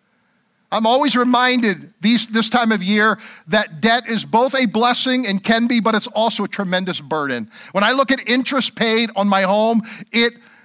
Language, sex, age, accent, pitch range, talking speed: English, male, 50-69, American, 205-240 Hz, 180 wpm